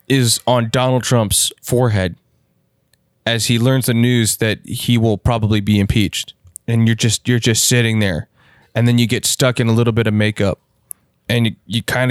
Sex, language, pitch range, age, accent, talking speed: male, English, 105-120 Hz, 20-39, American, 190 wpm